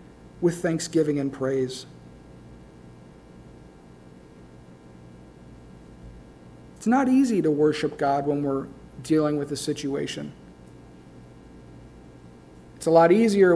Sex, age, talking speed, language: male, 50-69, 90 wpm, English